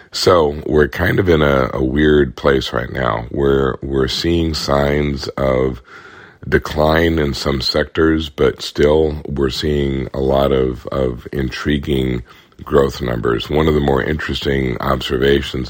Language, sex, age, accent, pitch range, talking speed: English, male, 50-69, American, 65-70 Hz, 140 wpm